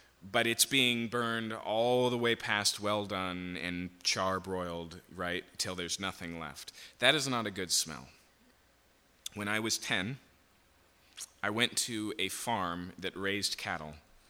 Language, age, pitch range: English, 20-39, 90-115 Hz